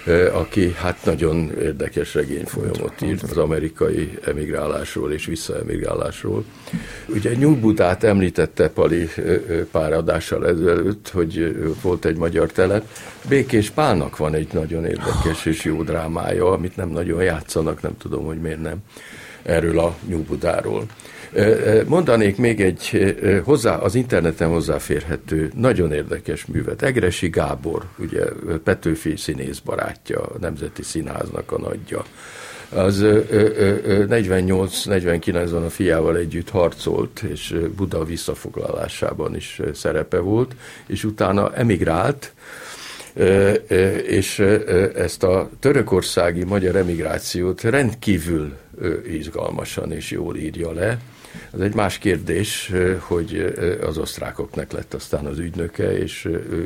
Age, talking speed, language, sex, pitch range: 50-69, 115 wpm, Hungarian, male, 85-105 Hz